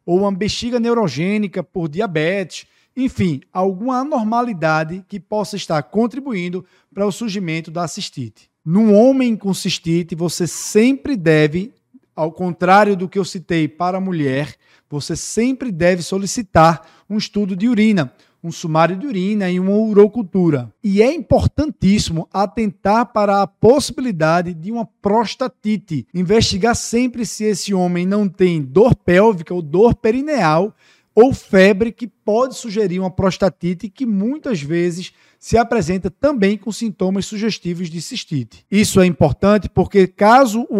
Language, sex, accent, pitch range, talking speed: Portuguese, male, Brazilian, 175-220 Hz, 140 wpm